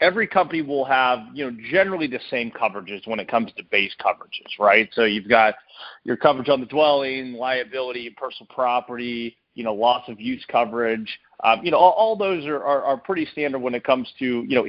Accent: American